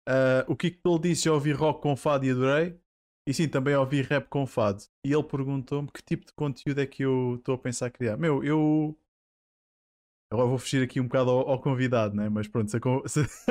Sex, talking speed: male, 240 wpm